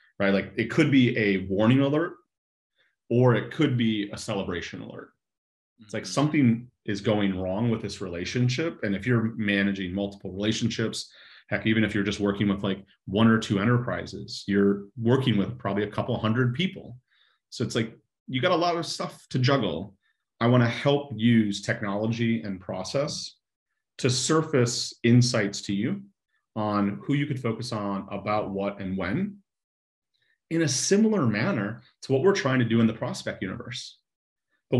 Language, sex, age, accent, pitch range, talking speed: English, male, 30-49, American, 100-125 Hz, 170 wpm